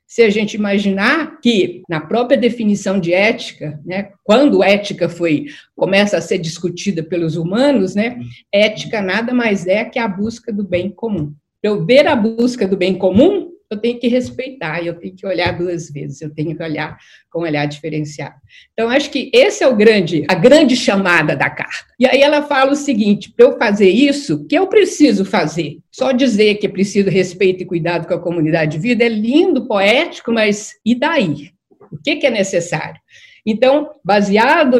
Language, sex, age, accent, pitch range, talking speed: Portuguese, female, 50-69, Brazilian, 180-255 Hz, 185 wpm